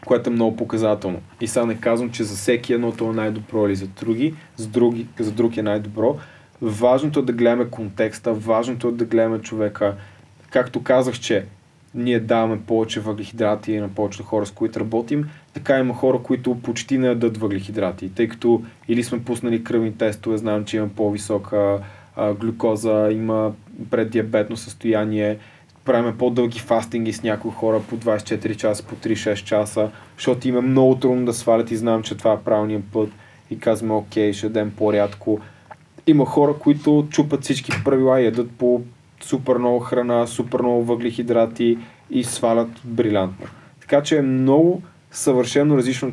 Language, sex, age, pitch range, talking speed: Bulgarian, male, 20-39, 110-130 Hz, 160 wpm